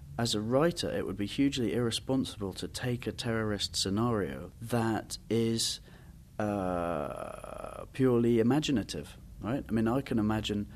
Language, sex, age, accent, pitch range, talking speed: English, male, 30-49, British, 90-110 Hz, 135 wpm